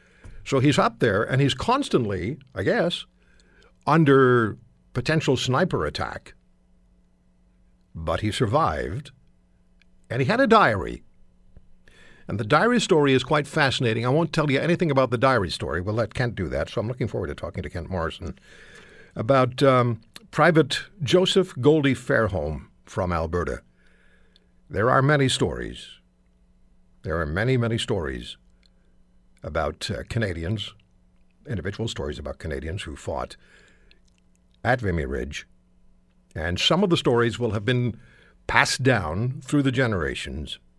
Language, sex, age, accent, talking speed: English, male, 60-79, American, 135 wpm